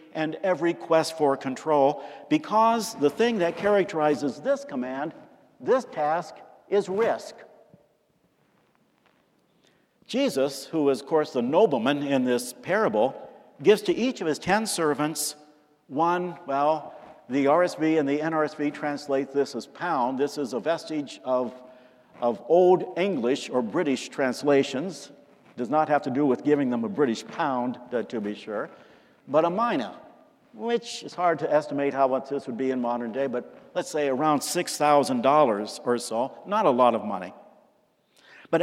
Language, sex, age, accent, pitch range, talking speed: English, male, 60-79, American, 140-190 Hz, 150 wpm